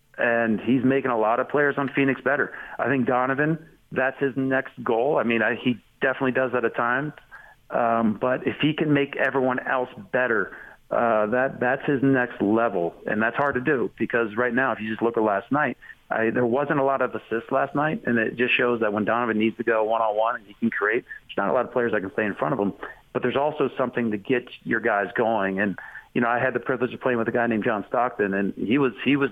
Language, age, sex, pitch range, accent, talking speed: English, 40-59, male, 115-135 Hz, American, 250 wpm